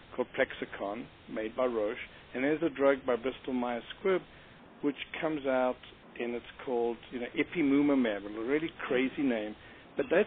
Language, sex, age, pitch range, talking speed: English, male, 60-79, 120-150 Hz, 160 wpm